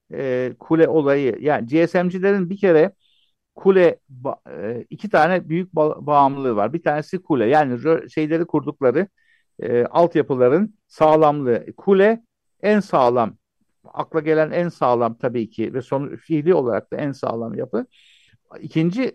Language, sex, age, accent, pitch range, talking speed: Turkish, male, 60-79, native, 135-180 Hz, 140 wpm